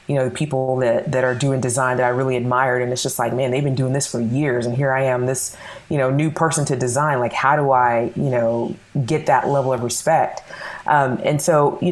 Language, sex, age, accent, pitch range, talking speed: English, female, 20-39, American, 125-165 Hz, 250 wpm